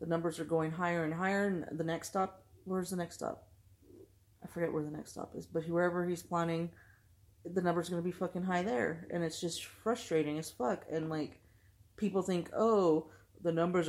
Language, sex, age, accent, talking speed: English, female, 30-49, American, 205 wpm